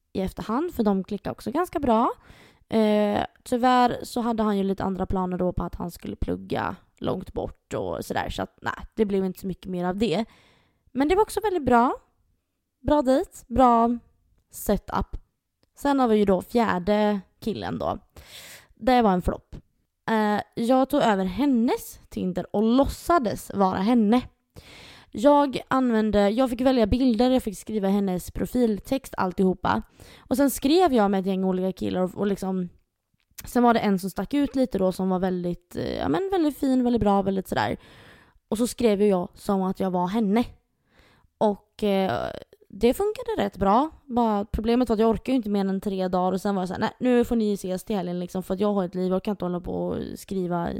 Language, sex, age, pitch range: Swedish, female, 20-39, 190-250 Hz